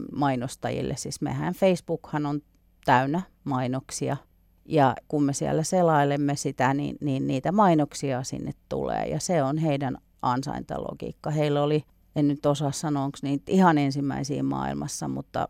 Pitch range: 135-170 Hz